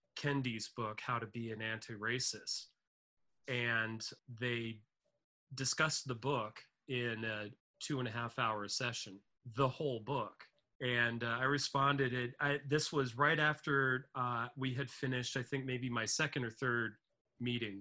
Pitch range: 110-135 Hz